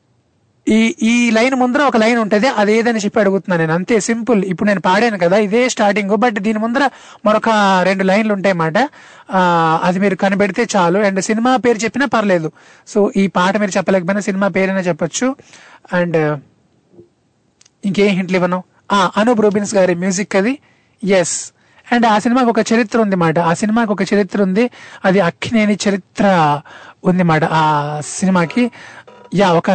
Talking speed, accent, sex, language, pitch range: 150 wpm, native, male, Telugu, 180-225 Hz